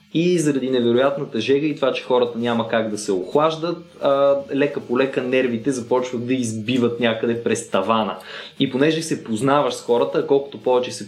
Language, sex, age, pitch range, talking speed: Bulgarian, male, 20-39, 115-145 Hz, 175 wpm